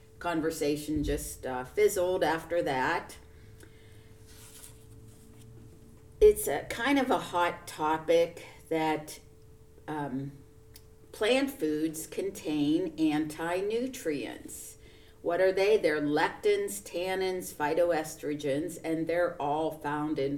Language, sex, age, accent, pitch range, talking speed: English, female, 50-69, American, 145-185 Hz, 90 wpm